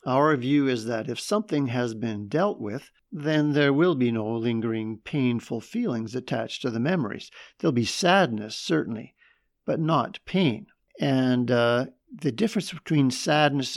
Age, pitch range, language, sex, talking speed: 50-69, 120-165 Hz, English, male, 155 wpm